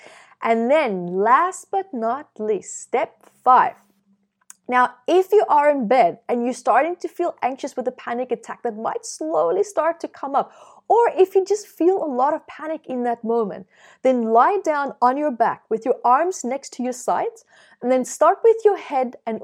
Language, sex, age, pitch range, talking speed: English, female, 30-49, 230-330 Hz, 195 wpm